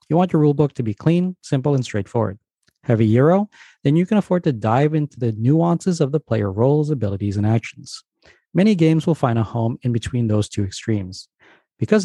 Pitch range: 115-155 Hz